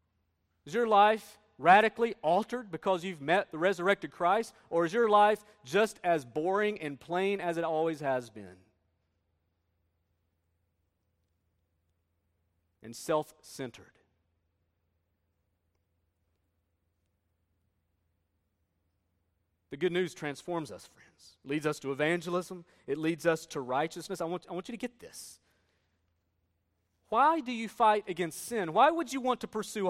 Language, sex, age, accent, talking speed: English, male, 40-59, American, 125 wpm